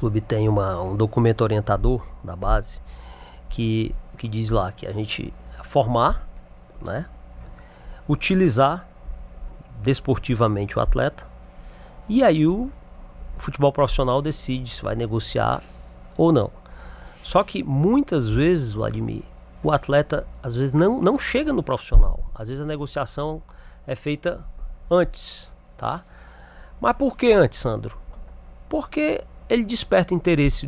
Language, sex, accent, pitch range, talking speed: Portuguese, male, Brazilian, 90-155 Hz, 125 wpm